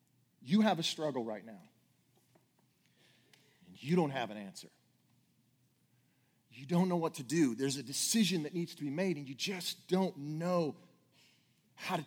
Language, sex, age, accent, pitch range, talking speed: English, male, 40-59, American, 120-170 Hz, 165 wpm